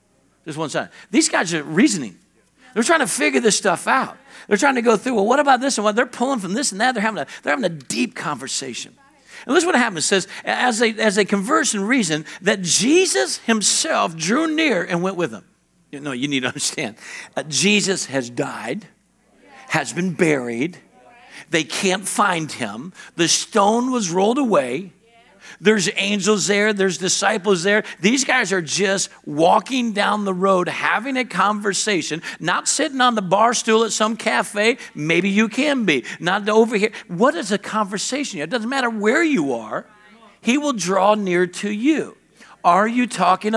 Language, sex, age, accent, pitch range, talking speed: English, male, 60-79, American, 185-240 Hz, 190 wpm